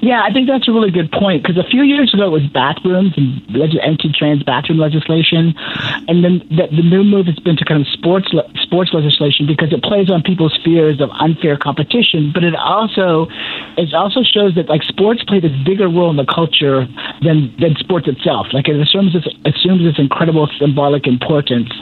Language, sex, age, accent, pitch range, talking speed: English, male, 50-69, American, 145-180 Hz, 200 wpm